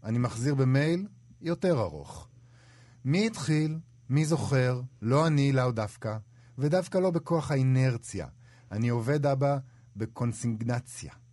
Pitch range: 100-130 Hz